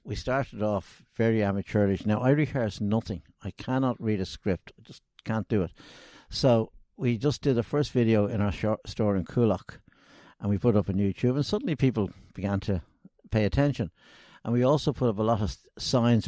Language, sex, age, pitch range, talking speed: English, male, 60-79, 95-125 Hz, 195 wpm